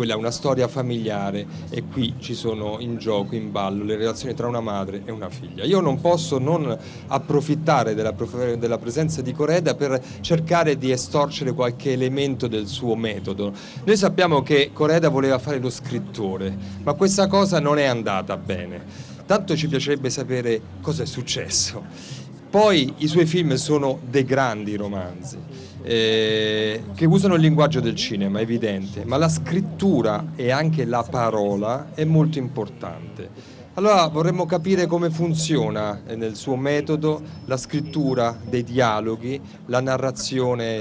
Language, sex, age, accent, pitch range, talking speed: Italian, male, 40-59, native, 110-155 Hz, 150 wpm